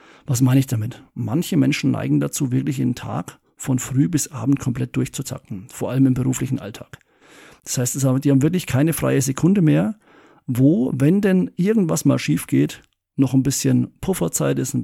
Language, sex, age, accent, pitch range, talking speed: German, male, 50-69, German, 115-140 Hz, 180 wpm